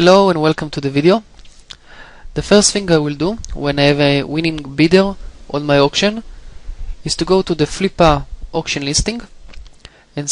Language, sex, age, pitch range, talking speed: English, male, 20-39, 140-170 Hz, 175 wpm